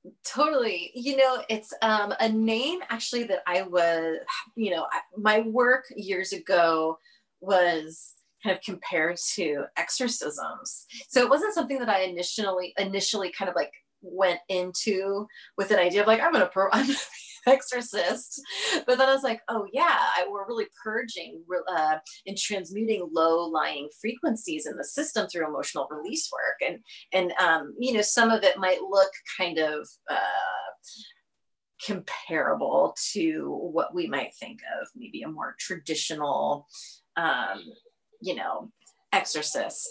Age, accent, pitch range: 30-49, American, 170-245 Hz